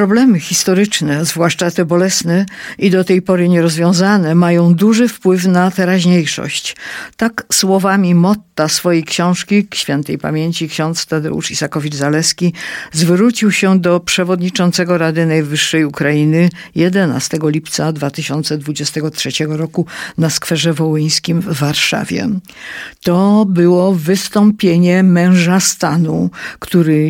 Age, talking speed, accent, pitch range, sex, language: 50-69, 105 wpm, native, 160-190 Hz, female, Polish